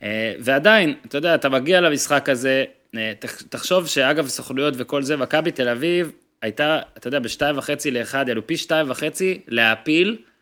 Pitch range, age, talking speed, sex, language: 130-175 Hz, 20-39, 155 wpm, male, Hebrew